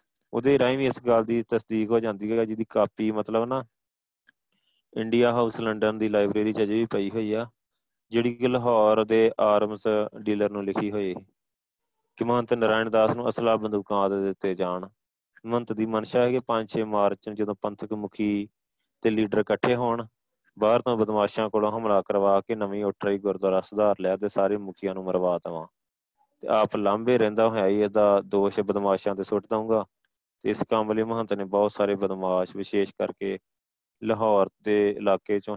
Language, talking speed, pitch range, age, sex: Punjabi, 170 wpm, 100-115 Hz, 20-39, male